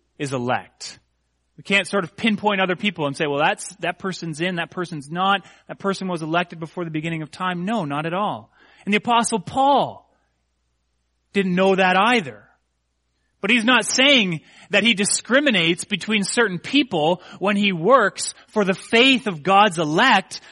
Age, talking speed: 30-49, 175 wpm